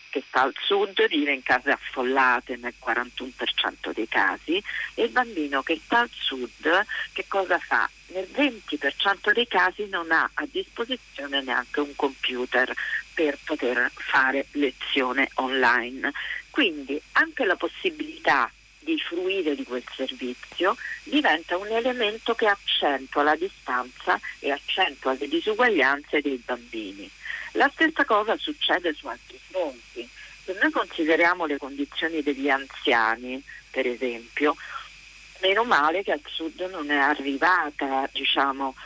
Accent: native